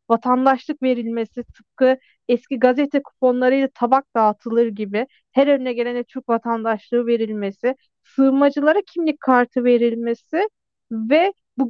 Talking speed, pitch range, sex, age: 110 wpm, 240-295 Hz, female, 40-59